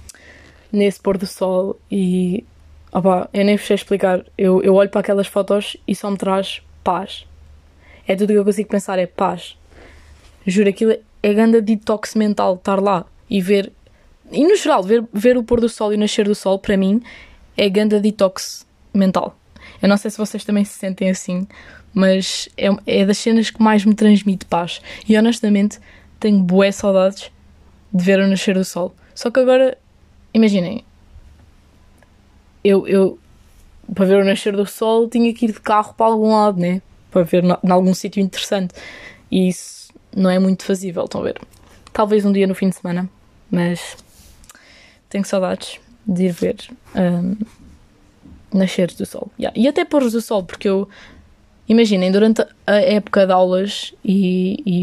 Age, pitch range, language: 10-29, 185-215 Hz, Portuguese